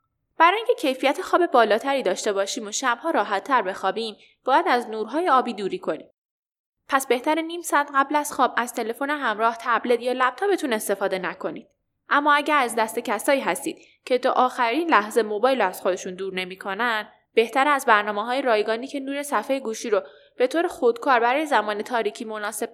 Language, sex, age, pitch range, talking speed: Persian, female, 10-29, 210-290 Hz, 170 wpm